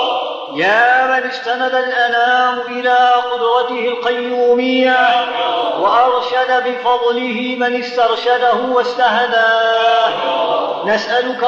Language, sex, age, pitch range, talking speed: Arabic, male, 50-69, 235-250 Hz, 65 wpm